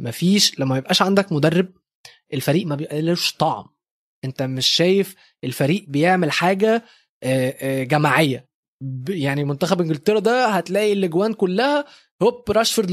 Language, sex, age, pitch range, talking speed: Arabic, male, 20-39, 145-195 Hz, 125 wpm